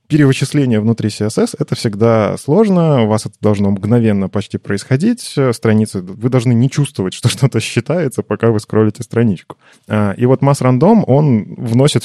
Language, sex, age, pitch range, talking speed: Russian, male, 20-39, 100-130 Hz, 155 wpm